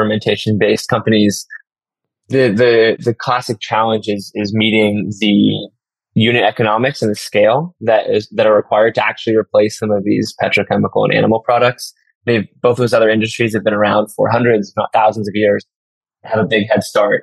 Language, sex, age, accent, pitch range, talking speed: English, male, 20-39, American, 105-125 Hz, 180 wpm